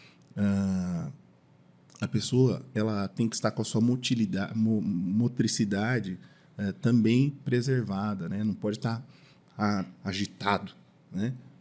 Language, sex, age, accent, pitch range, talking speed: Portuguese, male, 20-39, Brazilian, 105-145 Hz, 120 wpm